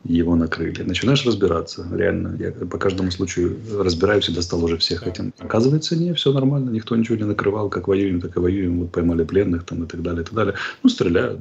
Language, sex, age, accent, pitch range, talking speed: Russian, male, 30-49, native, 85-100 Hz, 210 wpm